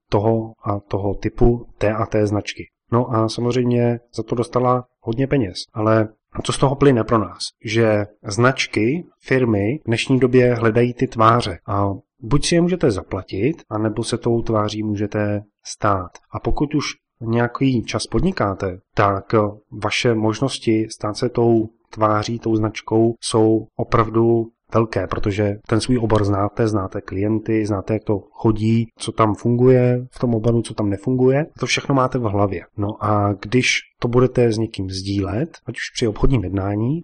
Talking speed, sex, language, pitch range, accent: 160 wpm, male, Czech, 105-125 Hz, native